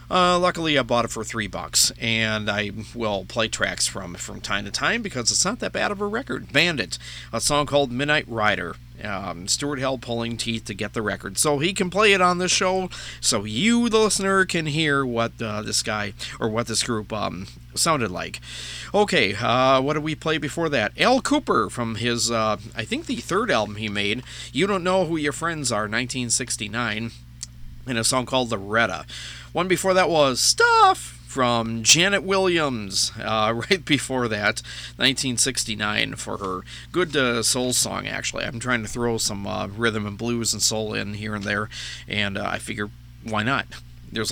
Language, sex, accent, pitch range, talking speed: English, male, American, 105-150 Hz, 190 wpm